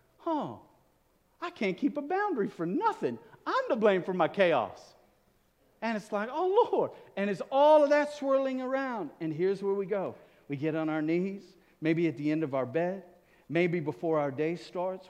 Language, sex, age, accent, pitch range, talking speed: English, male, 50-69, American, 135-195 Hz, 190 wpm